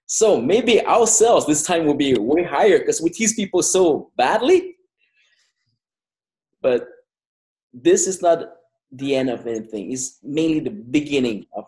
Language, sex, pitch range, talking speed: English, male, 135-200 Hz, 145 wpm